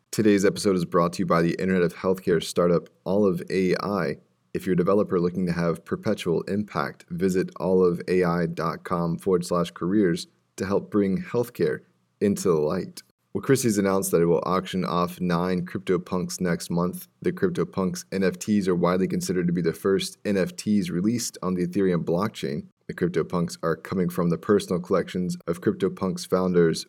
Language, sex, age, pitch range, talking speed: English, male, 20-39, 85-95 Hz, 165 wpm